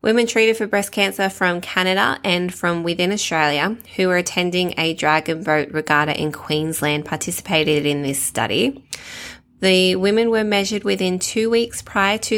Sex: female